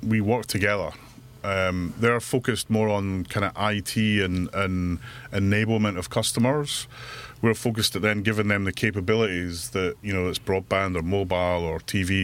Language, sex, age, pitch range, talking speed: English, male, 30-49, 95-115 Hz, 160 wpm